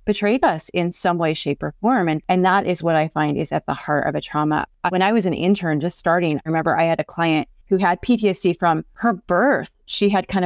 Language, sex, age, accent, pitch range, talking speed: English, female, 30-49, American, 170-215 Hz, 255 wpm